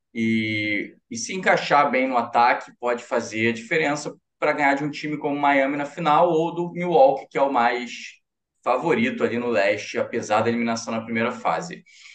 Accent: Brazilian